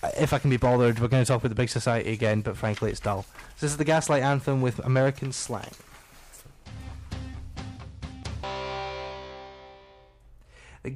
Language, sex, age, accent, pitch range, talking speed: English, male, 20-39, British, 115-150 Hz, 150 wpm